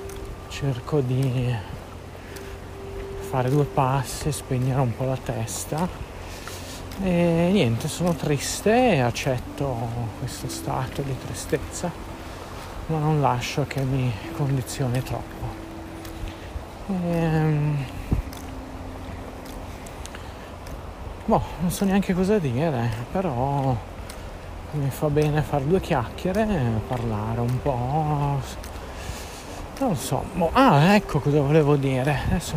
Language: Italian